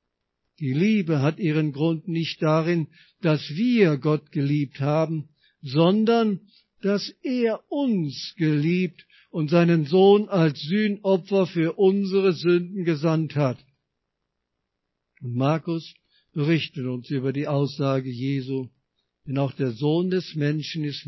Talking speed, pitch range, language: 120 wpm, 135-170 Hz, German